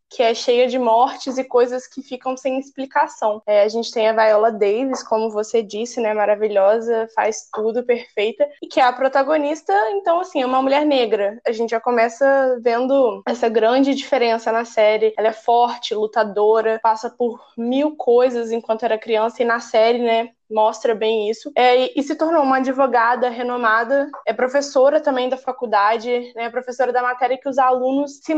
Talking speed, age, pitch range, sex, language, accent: 180 wpm, 10-29, 225-275 Hz, female, Portuguese, Brazilian